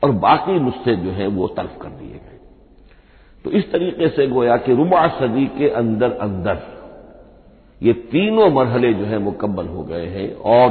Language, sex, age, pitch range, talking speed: Hindi, male, 60-79, 100-130 Hz, 170 wpm